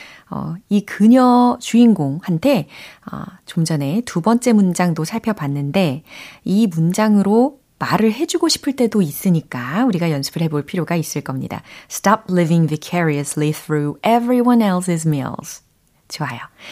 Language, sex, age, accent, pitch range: Korean, female, 30-49, native, 155-240 Hz